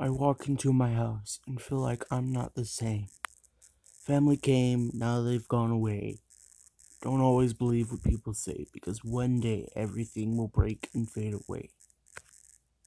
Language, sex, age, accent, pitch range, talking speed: English, male, 30-49, American, 100-120 Hz, 155 wpm